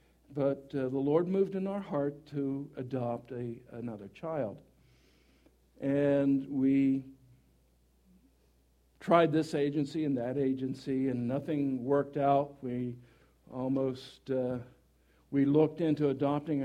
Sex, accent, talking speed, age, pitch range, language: male, American, 115 wpm, 60-79, 120-145 Hz, English